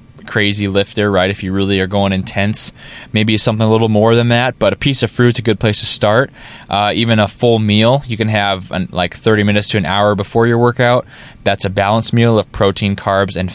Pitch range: 100-120 Hz